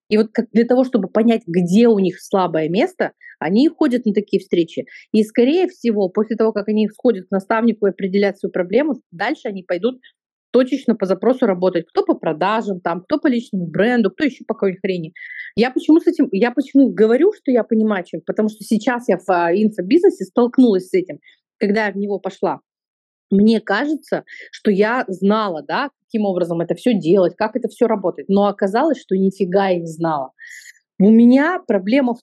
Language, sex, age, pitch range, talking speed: Russian, female, 30-49, 195-250 Hz, 190 wpm